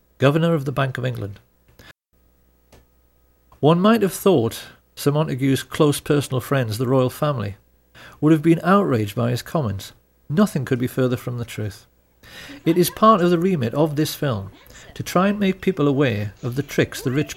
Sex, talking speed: male, 180 wpm